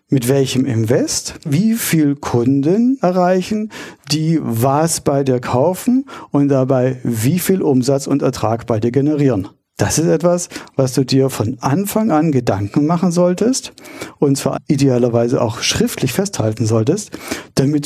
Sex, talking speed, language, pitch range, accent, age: male, 140 wpm, German, 130-175 Hz, German, 50-69